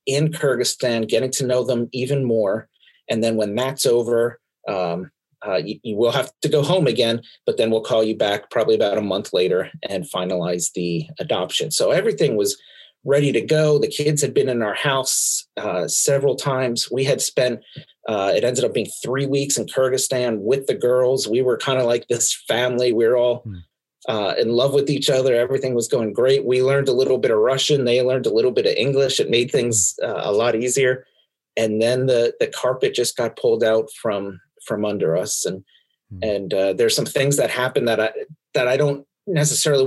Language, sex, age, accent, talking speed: English, male, 30-49, American, 205 wpm